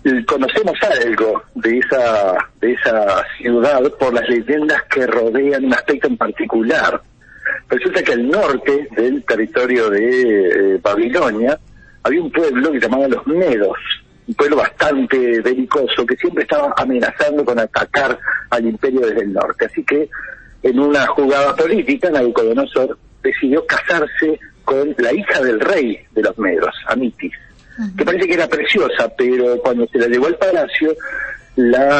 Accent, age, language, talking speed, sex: Argentinian, 60-79, Spanish, 150 wpm, male